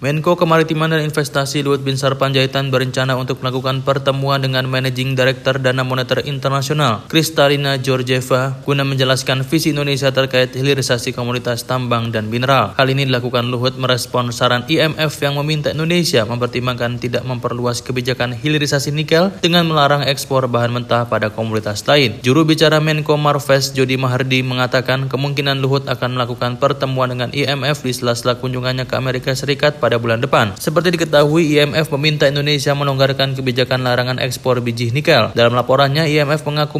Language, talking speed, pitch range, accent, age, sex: Indonesian, 150 wpm, 125-145 Hz, native, 20-39, male